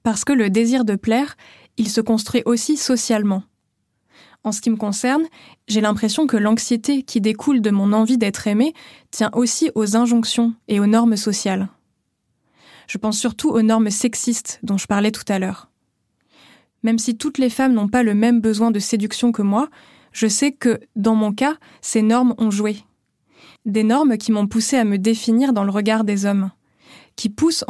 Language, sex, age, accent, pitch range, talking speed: French, female, 20-39, French, 210-245 Hz, 185 wpm